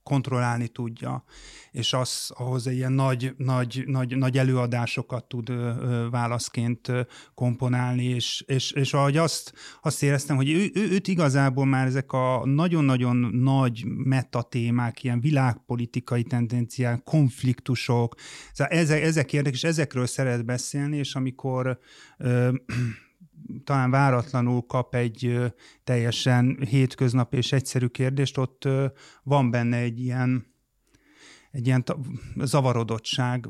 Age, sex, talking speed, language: 30-49, male, 120 wpm, Hungarian